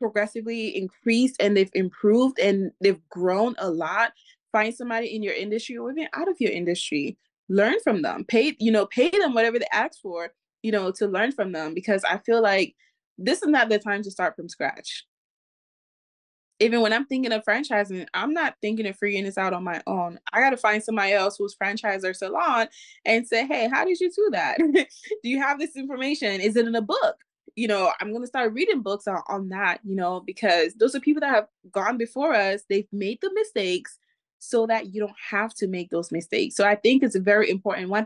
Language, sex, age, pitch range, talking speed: English, female, 20-39, 195-240 Hz, 220 wpm